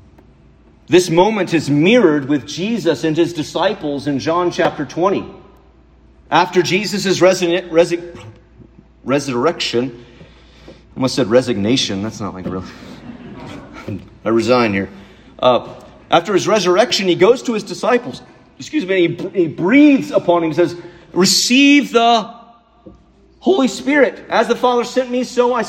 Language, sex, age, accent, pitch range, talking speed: English, male, 40-59, American, 145-225 Hz, 140 wpm